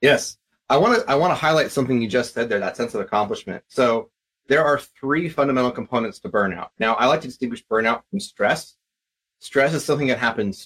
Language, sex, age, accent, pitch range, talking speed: English, male, 30-49, American, 110-130 Hz, 215 wpm